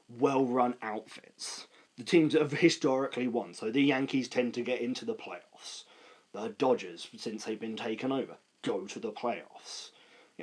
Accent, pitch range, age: British, 110-150 Hz, 30-49